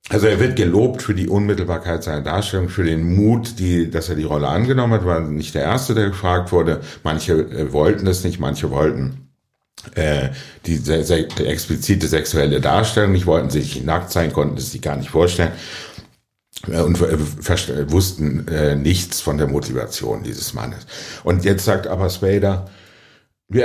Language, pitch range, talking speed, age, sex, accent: German, 90-115 Hz, 180 wpm, 60-79, male, German